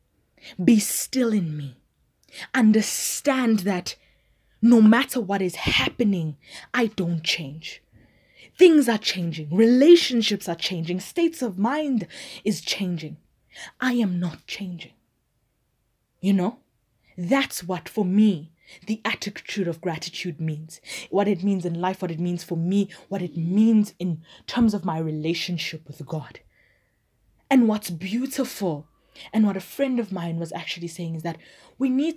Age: 20-39